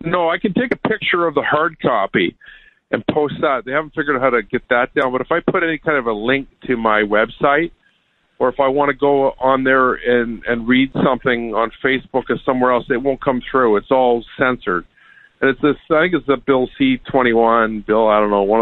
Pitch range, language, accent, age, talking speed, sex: 120-150 Hz, English, American, 50-69, 230 wpm, male